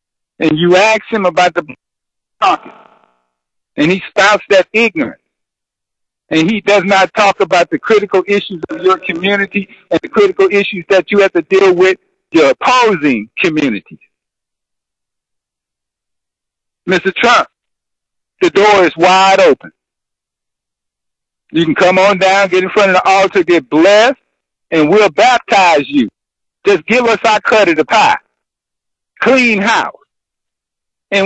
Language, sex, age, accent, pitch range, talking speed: English, male, 50-69, American, 185-235 Hz, 140 wpm